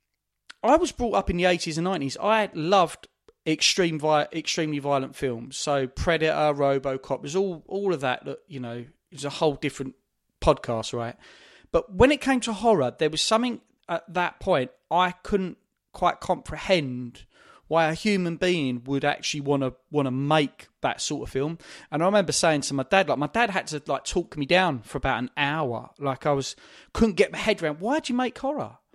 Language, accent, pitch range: English, British, 140-200 Hz